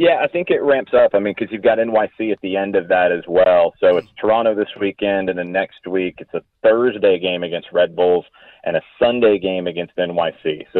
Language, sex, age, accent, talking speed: English, male, 30-49, American, 235 wpm